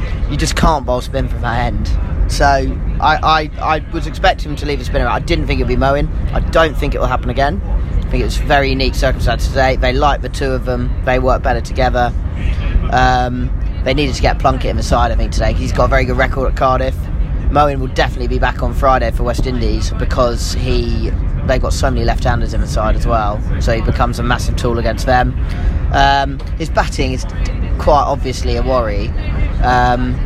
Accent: British